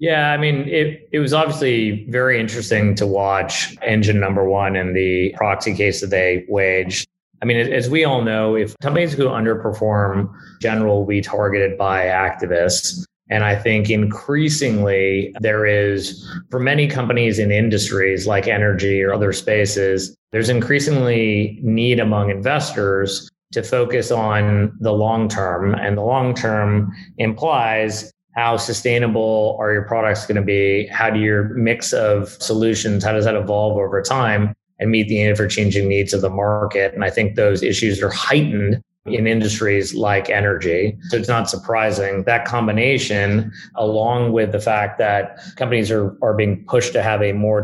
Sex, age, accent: male, 30-49, American